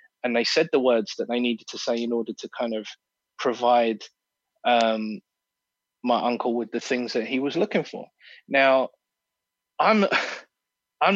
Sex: male